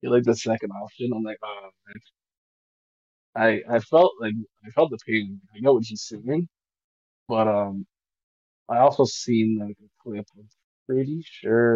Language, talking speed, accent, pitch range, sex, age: English, 165 wpm, American, 105-125 Hz, male, 20-39